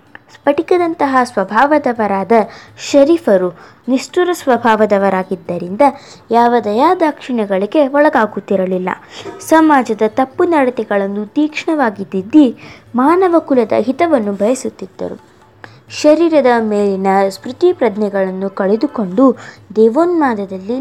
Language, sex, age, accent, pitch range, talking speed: Kannada, female, 20-39, native, 200-295 Hz, 65 wpm